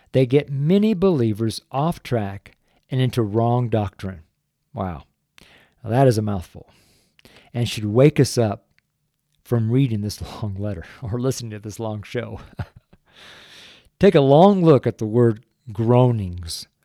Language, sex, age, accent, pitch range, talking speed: English, male, 50-69, American, 105-135 Hz, 145 wpm